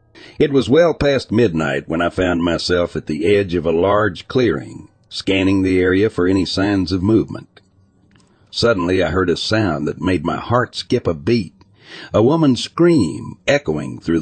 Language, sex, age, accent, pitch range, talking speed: English, male, 60-79, American, 90-115 Hz, 175 wpm